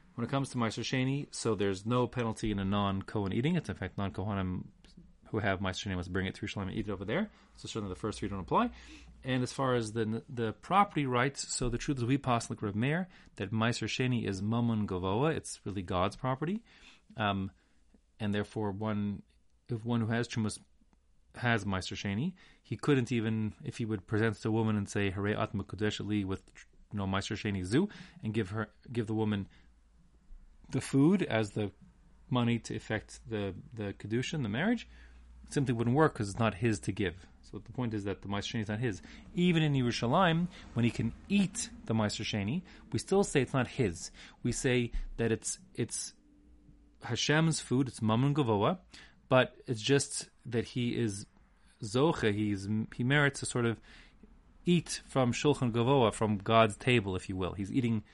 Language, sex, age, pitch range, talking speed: English, male, 30-49, 105-130 Hz, 195 wpm